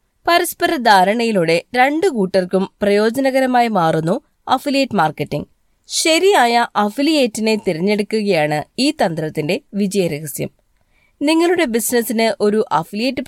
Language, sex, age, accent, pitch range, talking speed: Malayalam, female, 20-39, native, 200-270 Hz, 80 wpm